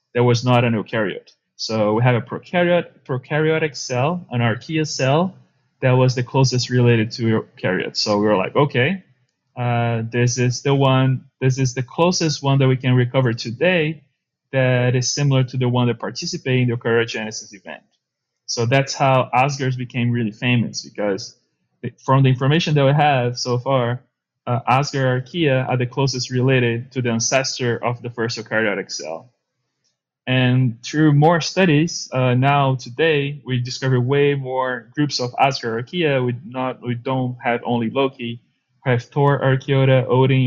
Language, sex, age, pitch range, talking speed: English, male, 20-39, 120-135 Hz, 165 wpm